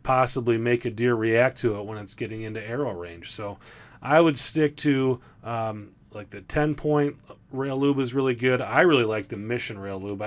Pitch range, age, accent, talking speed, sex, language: 115-135 Hz, 30-49, American, 205 wpm, male, English